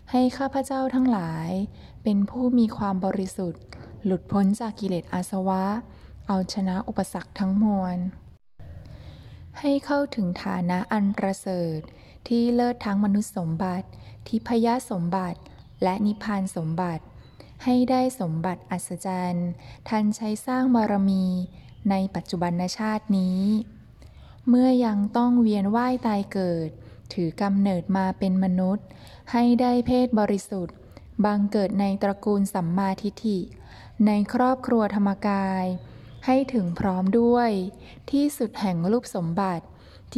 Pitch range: 185-225 Hz